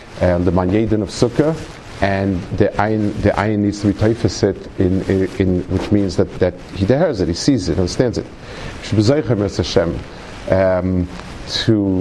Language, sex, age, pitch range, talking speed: English, male, 50-69, 95-115 Hz, 155 wpm